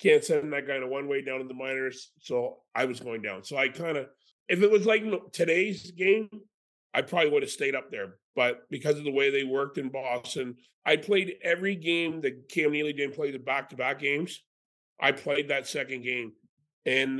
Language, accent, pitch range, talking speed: English, American, 130-175 Hz, 210 wpm